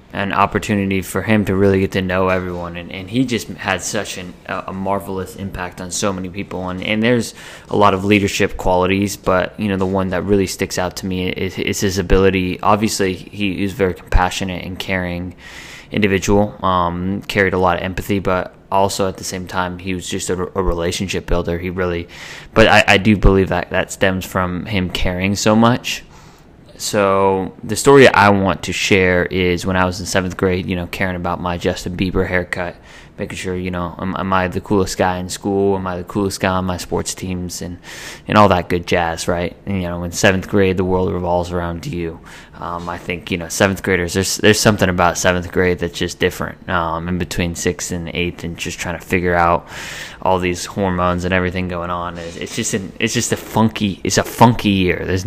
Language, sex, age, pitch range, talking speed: English, male, 20-39, 90-100 Hz, 215 wpm